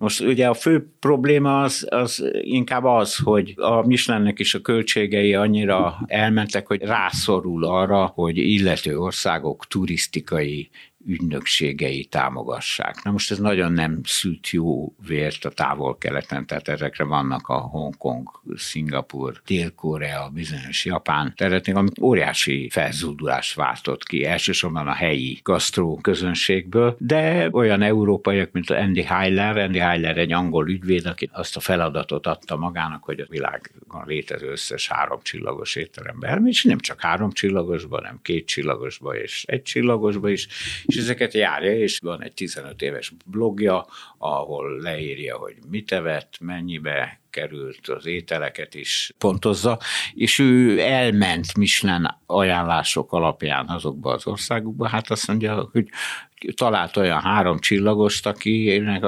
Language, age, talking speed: Hungarian, 60-79, 135 wpm